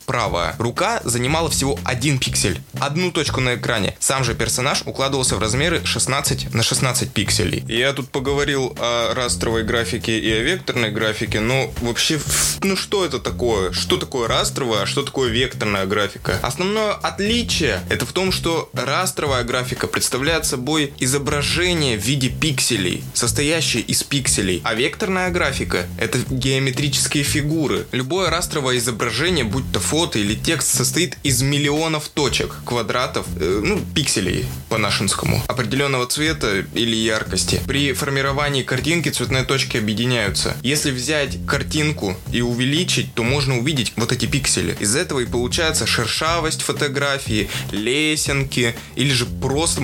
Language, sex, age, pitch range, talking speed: Russian, male, 20-39, 115-145 Hz, 135 wpm